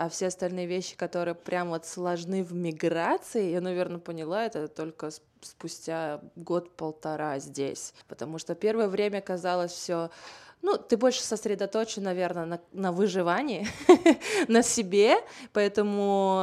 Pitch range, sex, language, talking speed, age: 170-205 Hz, female, Russian, 130 wpm, 20-39